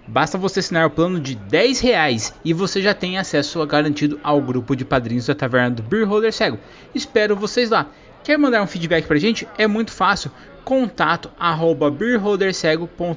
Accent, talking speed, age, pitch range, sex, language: Brazilian, 175 wpm, 20-39, 165-225 Hz, male, Portuguese